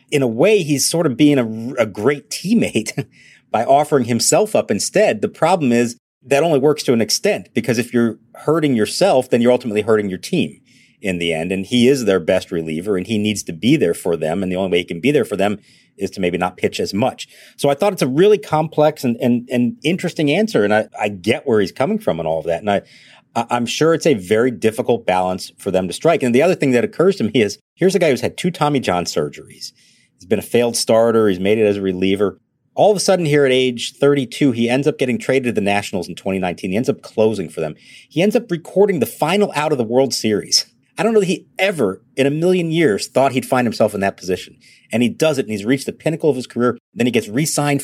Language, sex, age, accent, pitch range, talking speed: English, male, 40-59, American, 110-155 Hz, 255 wpm